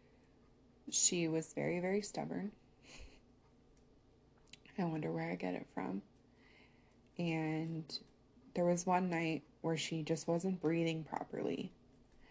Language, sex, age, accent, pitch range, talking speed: English, female, 20-39, American, 135-165 Hz, 110 wpm